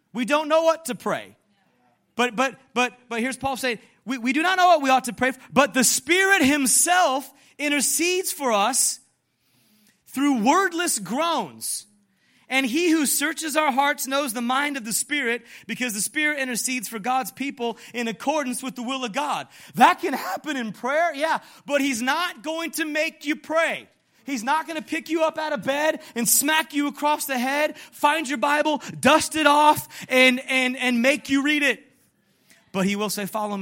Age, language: 30-49, English